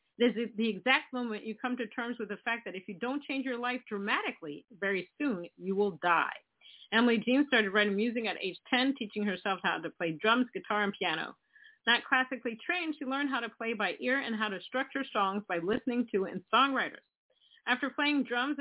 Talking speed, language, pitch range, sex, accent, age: 210 wpm, English, 210-255 Hz, female, American, 40-59